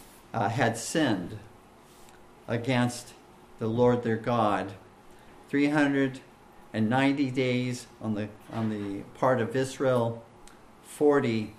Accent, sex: American, male